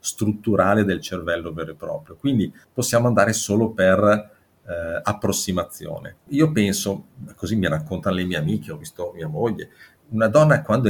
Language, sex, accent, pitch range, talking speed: Italian, male, native, 95-105 Hz, 155 wpm